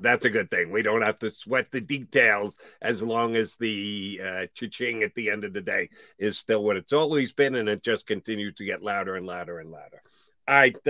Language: English